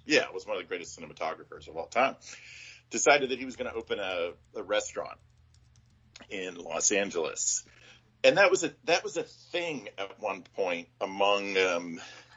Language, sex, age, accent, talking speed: English, male, 40-59, American, 175 wpm